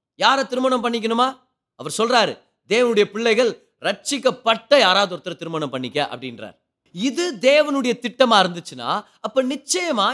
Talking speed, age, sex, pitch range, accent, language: 110 wpm, 30-49, male, 200-280 Hz, native, Tamil